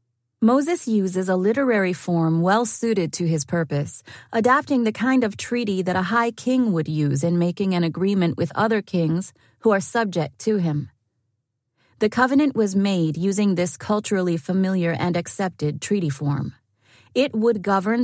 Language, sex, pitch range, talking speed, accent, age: English, female, 160-210 Hz, 160 wpm, American, 30-49